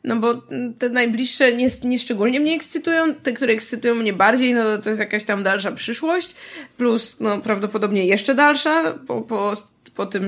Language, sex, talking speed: Polish, female, 170 wpm